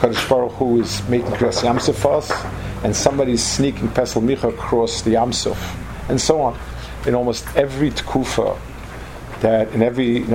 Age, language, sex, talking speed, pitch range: 50-69, English, male, 150 wpm, 110-130 Hz